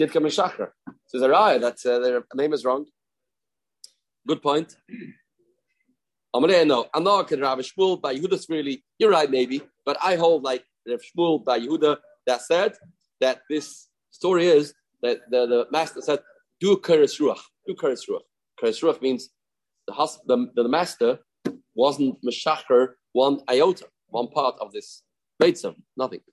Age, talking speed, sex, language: 30-49, 115 wpm, male, English